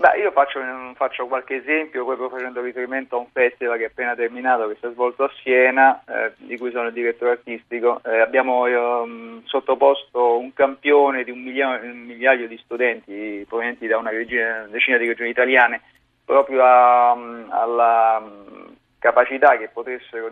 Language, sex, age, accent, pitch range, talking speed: Italian, male, 30-49, native, 115-135 Hz, 170 wpm